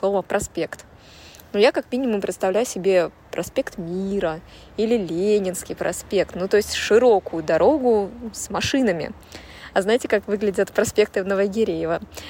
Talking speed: 130 wpm